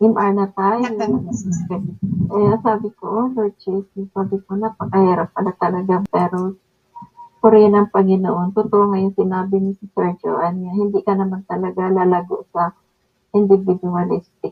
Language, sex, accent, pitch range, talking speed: Filipino, female, native, 175-200 Hz, 130 wpm